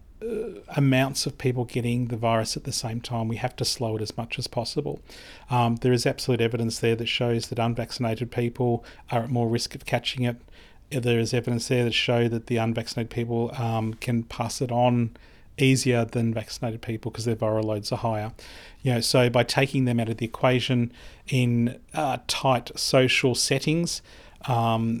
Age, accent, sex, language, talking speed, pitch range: 40-59, Australian, male, English, 185 wpm, 115-130 Hz